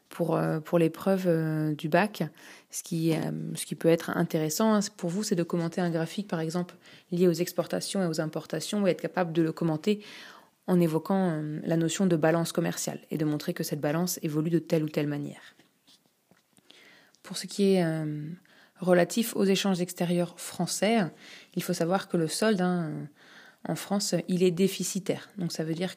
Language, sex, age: French, female, 20-39